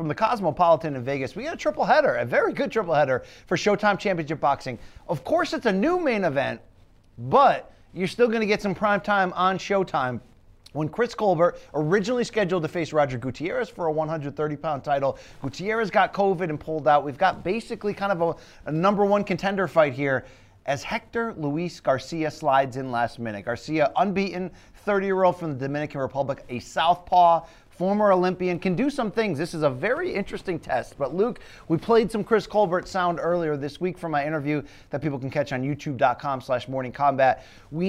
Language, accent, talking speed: English, American, 195 wpm